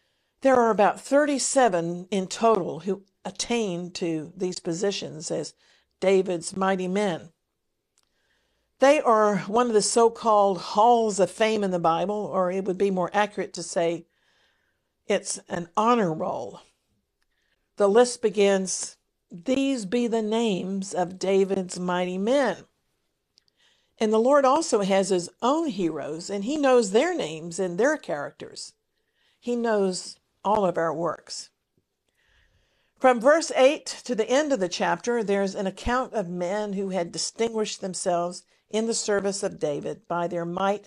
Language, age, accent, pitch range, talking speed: English, 50-69, American, 185-240 Hz, 145 wpm